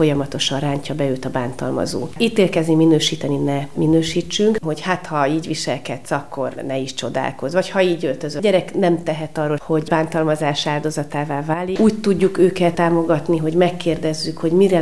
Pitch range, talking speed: 155-185 Hz, 160 wpm